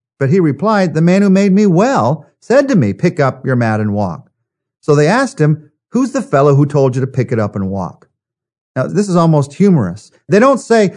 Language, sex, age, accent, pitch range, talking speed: English, male, 50-69, American, 120-170 Hz, 230 wpm